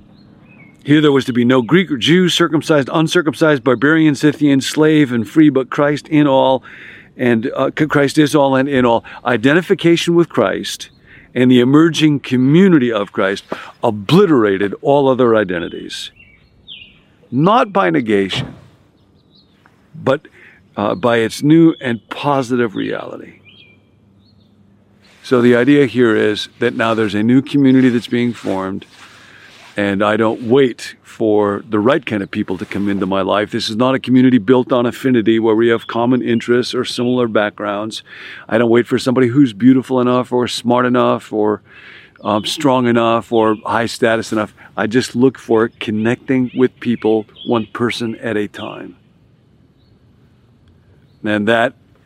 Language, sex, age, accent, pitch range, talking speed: English, male, 50-69, American, 110-135 Hz, 150 wpm